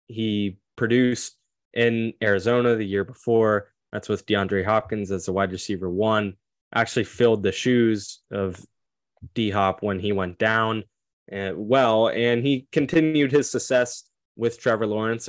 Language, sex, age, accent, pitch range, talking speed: English, male, 20-39, American, 100-120 Hz, 140 wpm